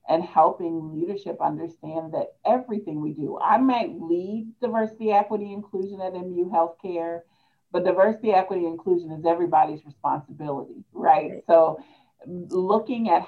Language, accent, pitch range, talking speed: English, American, 155-205 Hz, 125 wpm